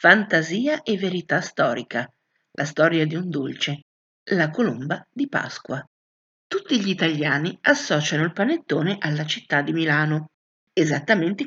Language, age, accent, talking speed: Italian, 50-69, native, 125 wpm